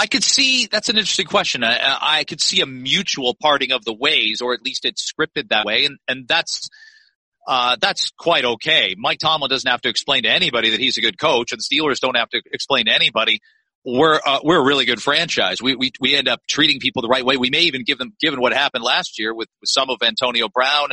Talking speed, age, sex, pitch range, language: 245 wpm, 40-59, male, 125-150 Hz, English